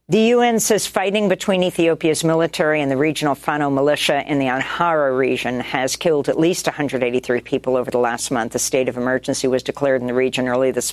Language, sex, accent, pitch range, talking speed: English, female, American, 130-165 Hz, 205 wpm